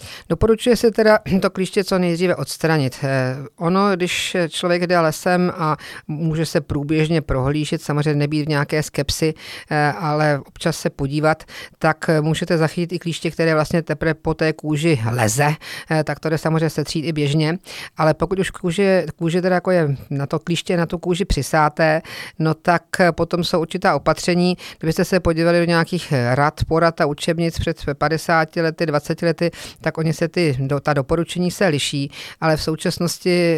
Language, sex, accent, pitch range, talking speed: Czech, female, native, 150-175 Hz, 165 wpm